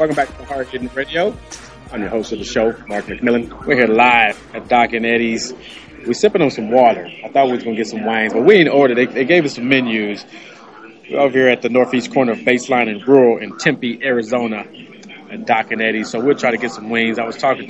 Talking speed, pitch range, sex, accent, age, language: 245 wpm, 115-130 Hz, male, American, 30-49, English